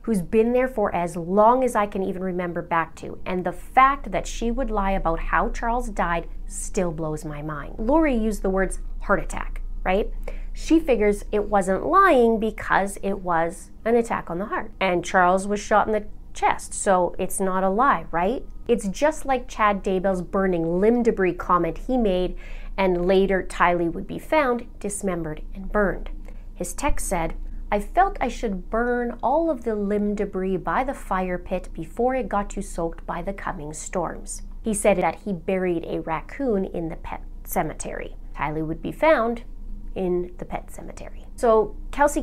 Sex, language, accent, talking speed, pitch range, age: female, English, American, 180 wpm, 180-230 Hz, 30-49